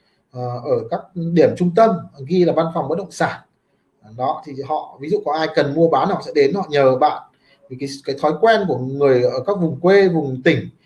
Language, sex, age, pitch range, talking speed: Vietnamese, male, 20-39, 155-215 Hz, 230 wpm